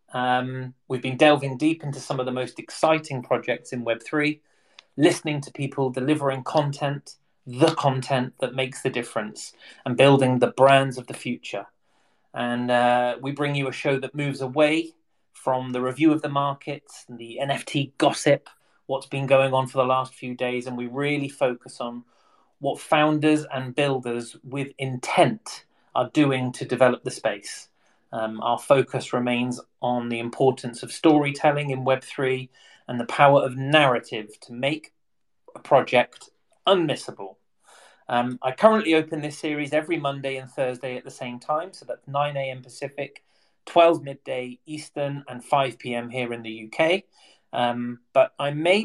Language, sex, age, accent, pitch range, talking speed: English, male, 30-49, British, 125-145 Hz, 160 wpm